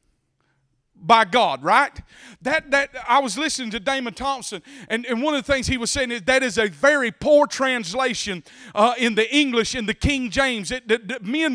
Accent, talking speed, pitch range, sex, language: American, 205 wpm, 235-290 Hz, male, English